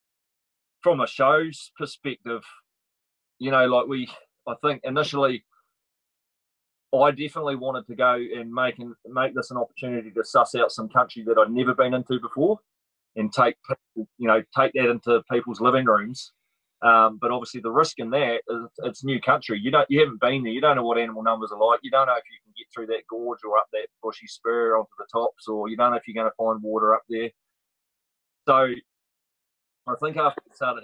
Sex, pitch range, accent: male, 110-125 Hz, Australian